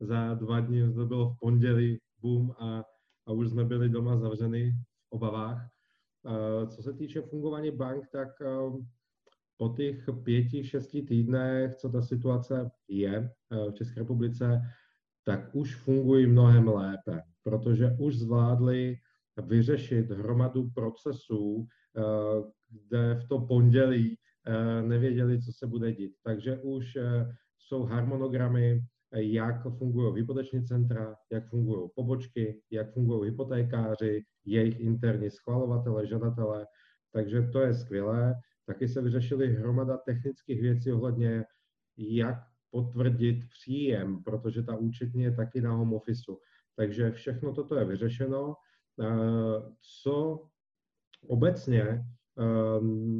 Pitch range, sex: 115-125 Hz, male